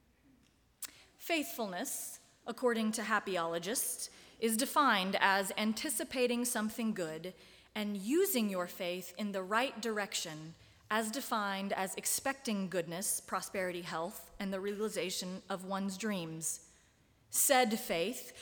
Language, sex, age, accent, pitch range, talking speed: English, female, 30-49, American, 190-250 Hz, 110 wpm